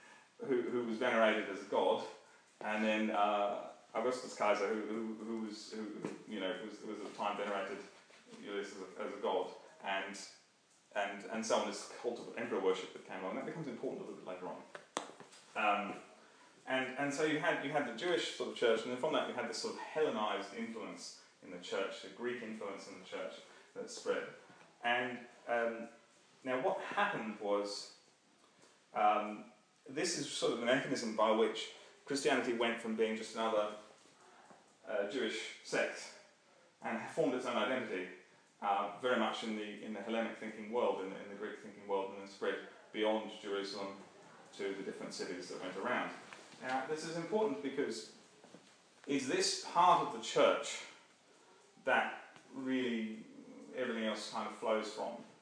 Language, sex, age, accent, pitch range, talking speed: English, male, 30-49, British, 105-145 Hz, 180 wpm